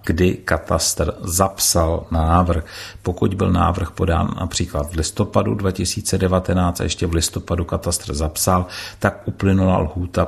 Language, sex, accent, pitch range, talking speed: Czech, male, native, 85-95 Hz, 125 wpm